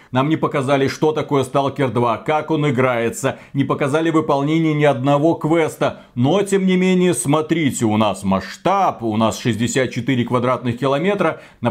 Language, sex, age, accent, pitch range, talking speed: Russian, male, 40-59, native, 130-165 Hz, 155 wpm